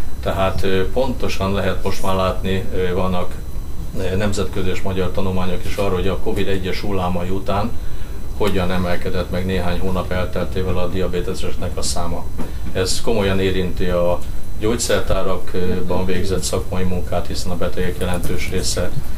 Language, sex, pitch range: Hungarian, male, 90-95 Hz